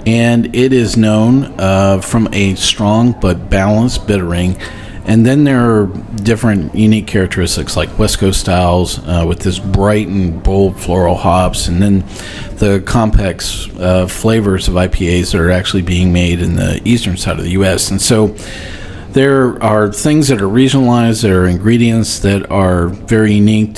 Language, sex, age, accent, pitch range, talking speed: English, male, 40-59, American, 95-110 Hz, 165 wpm